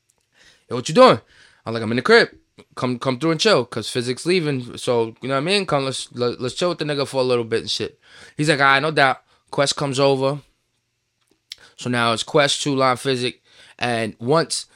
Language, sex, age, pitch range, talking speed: English, male, 20-39, 130-175 Hz, 225 wpm